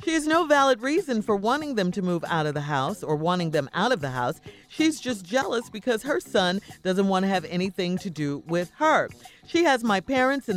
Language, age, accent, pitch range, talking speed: English, 40-59, American, 175-260 Hz, 235 wpm